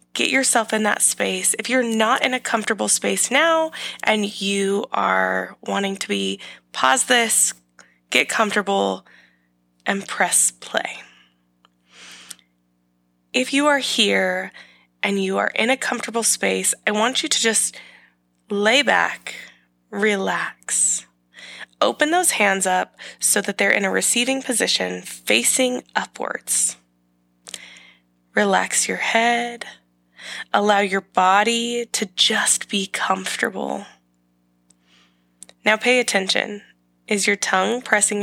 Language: English